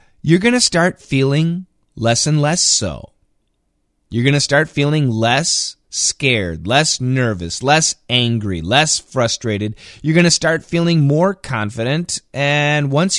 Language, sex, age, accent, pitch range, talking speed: English, male, 20-39, American, 115-150 Hz, 140 wpm